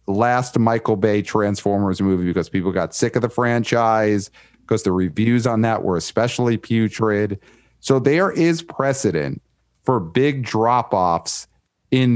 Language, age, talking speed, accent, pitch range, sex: English, 40-59, 140 wpm, American, 105-125 Hz, male